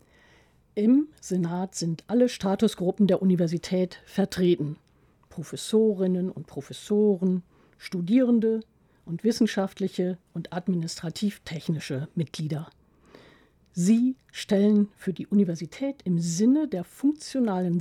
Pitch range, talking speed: 170-215 Hz, 90 wpm